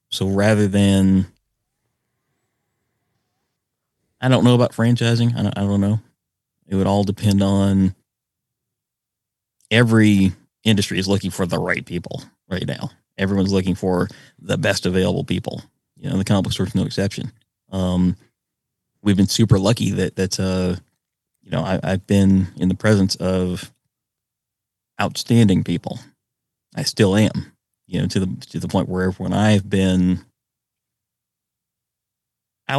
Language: English